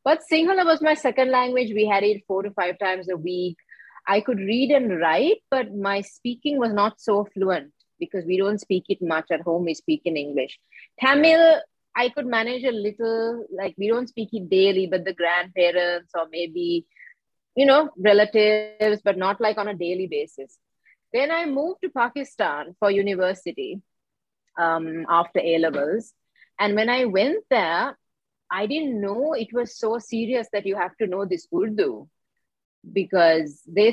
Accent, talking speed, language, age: Indian, 170 wpm, English, 30-49